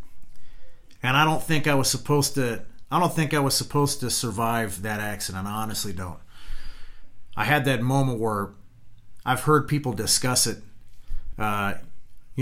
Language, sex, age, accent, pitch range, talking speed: English, male, 40-59, American, 105-135 Hz, 155 wpm